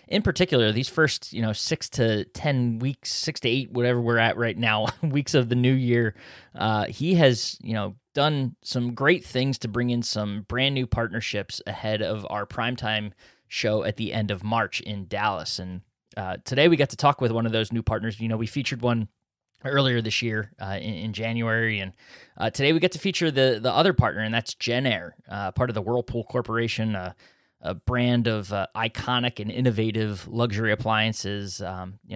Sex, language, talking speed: male, English, 200 wpm